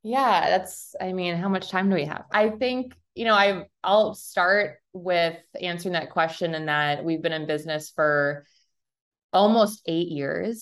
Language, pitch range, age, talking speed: English, 145-175 Hz, 20-39, 175 wpm